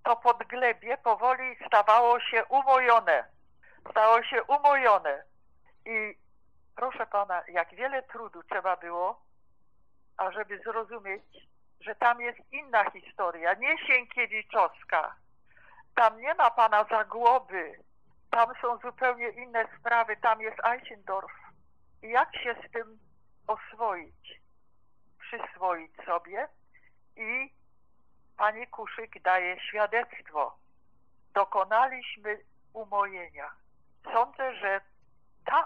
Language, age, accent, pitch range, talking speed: Polish, 50-69, native, 195-240 Hz, 100 wpm